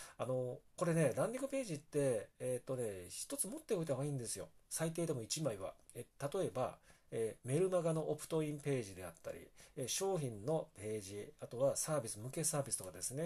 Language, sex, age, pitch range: Japanese, male, 40-59, 115-165 Hz